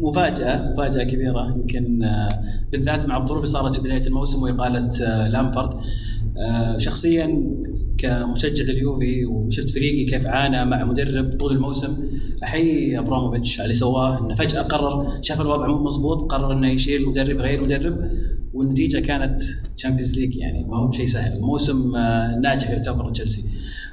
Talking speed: 140 wpm